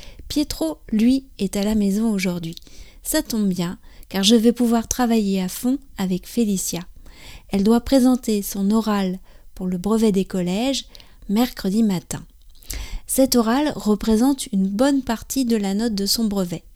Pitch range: 190-245 Hz